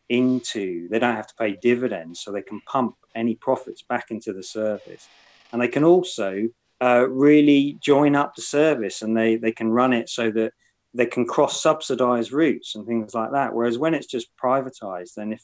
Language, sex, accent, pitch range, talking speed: English, male, British, 110-135 Hz, 200 wpm